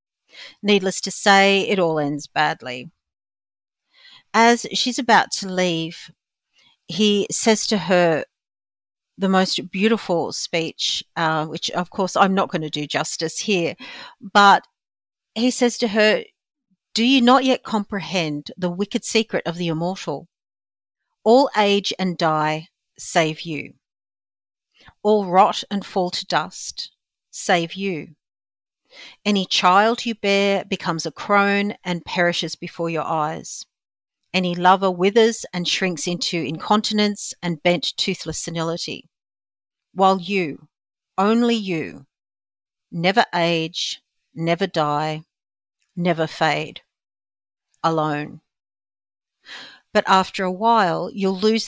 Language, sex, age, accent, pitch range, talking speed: English, female, 50-69, Australian, 165-210 Hz, 115 wpm